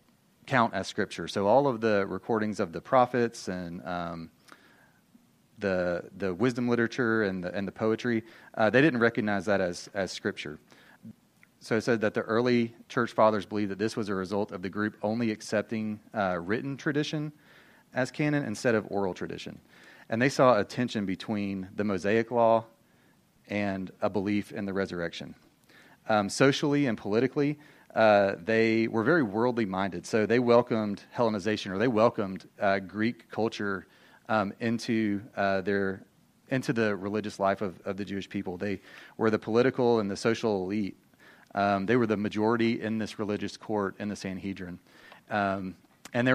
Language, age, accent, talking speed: English, 30-49, American, 165 wpm